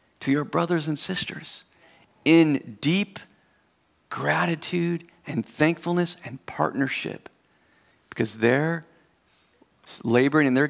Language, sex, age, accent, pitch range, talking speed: English, male, 40-59, American, 125-160 Hz, 90 wpm